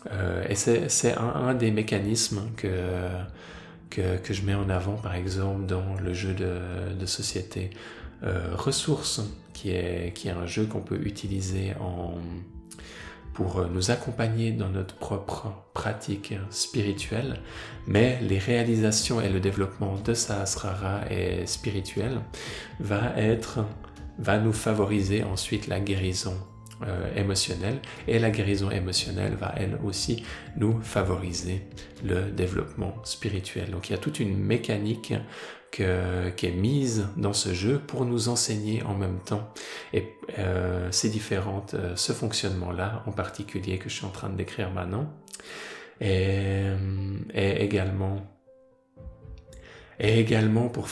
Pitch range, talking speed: 95-110 Hz, 140 wpm